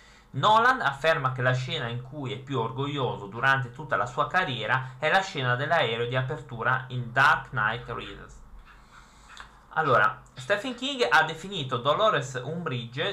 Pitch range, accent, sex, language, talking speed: 120-150 Hz, native, male, Italian, 145 wpm